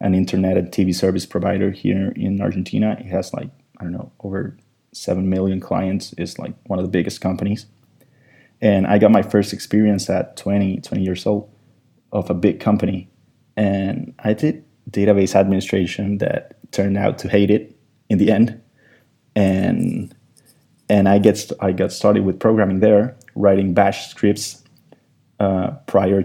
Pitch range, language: 95-110 Hz, English